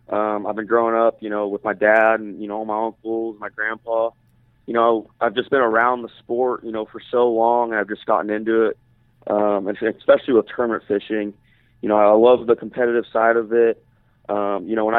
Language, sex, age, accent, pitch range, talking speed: English, male, 30-49, American, 110-120 Hz, 220 wpm